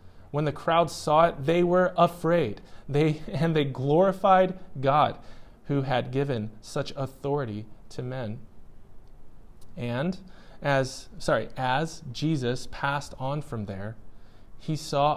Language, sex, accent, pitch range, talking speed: English, male, American, 120-155 Hz, 125 wpm